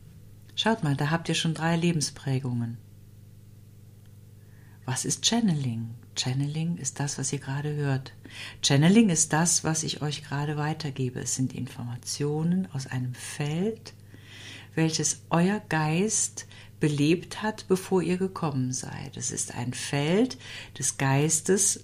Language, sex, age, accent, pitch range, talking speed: German, female, 50-69, German, 120-160 Hz, 130 wpm